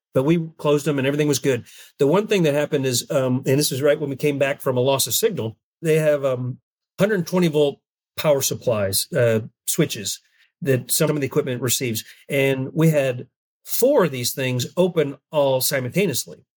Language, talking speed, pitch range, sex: English, 205 wpm, 130-160 Hz, male